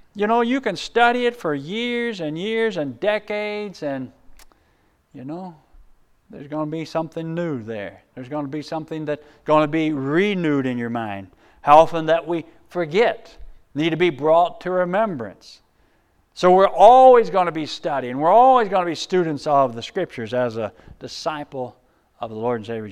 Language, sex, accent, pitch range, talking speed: English, male, American, 150-240 Hz, 185 wpm